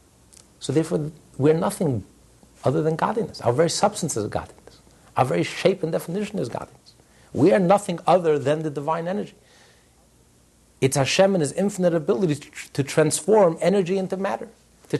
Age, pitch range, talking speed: 60-79, 125-175 Hz, 160 wpm